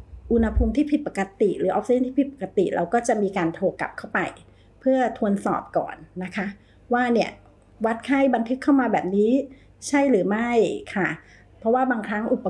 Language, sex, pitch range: Thai, female, 195-255 Hz